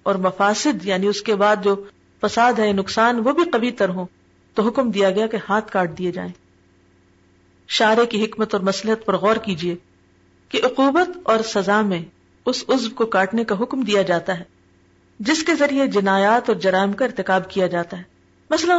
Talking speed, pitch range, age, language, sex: 185 wpm, 185-255 Hz, 40-59, Urdu, female